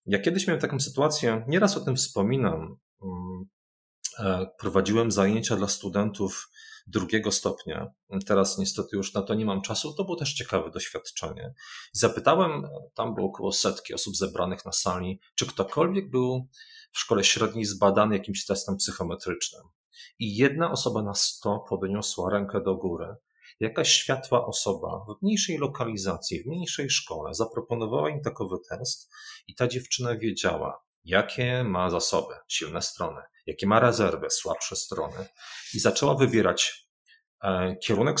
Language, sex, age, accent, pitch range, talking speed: Polish, male, 40-59, native, 100-140 Hz, 135 wpm